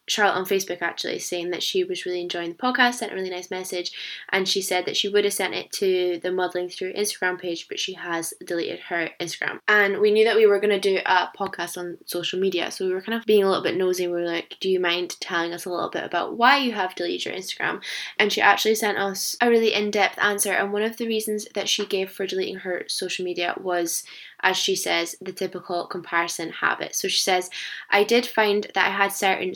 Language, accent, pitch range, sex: English, British, 180-205 Hz, female